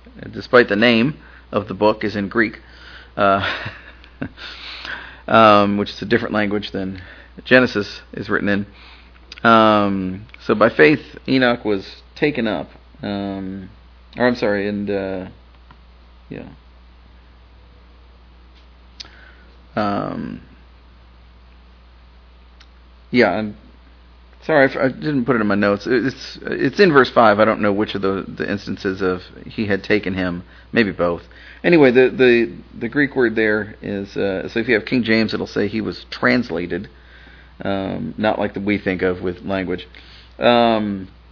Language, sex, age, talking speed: English, male, 40-59, 140 wpm